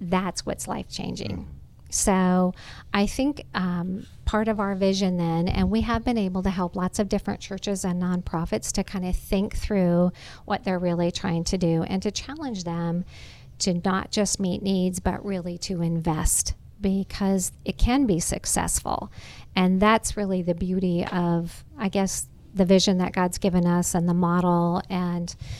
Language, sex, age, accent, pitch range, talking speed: English, female, 50-69, American, 180-205 Hz, 170 wpm